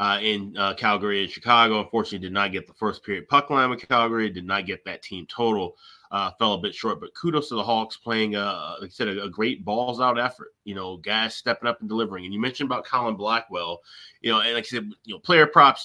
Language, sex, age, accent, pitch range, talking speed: English, male, 30-49, American, 105-130 Hz, 250 wpm